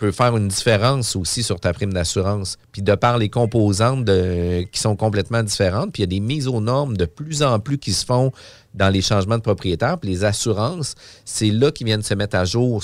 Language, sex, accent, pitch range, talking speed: French, male, Canadian, 100-120 Hz, 235 wpm